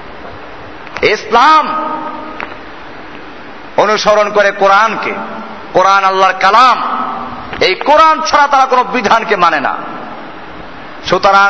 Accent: native